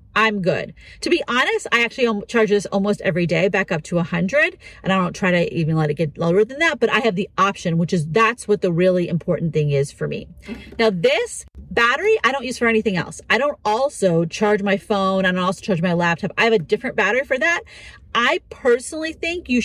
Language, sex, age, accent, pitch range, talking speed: English, female, 40-59, American, 190-270 Hz, 230 wpm